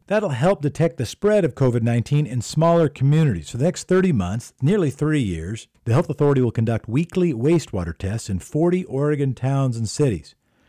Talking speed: 180 wpm